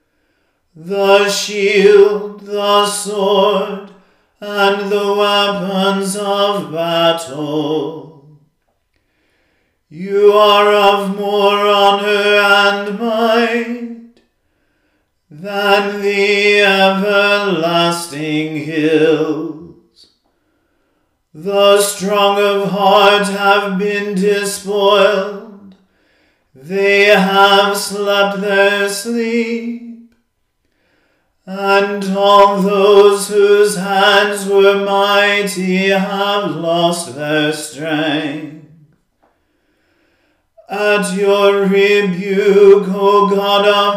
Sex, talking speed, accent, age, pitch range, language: male, 65 wpm, American, 40-59, 195-205 Hz, English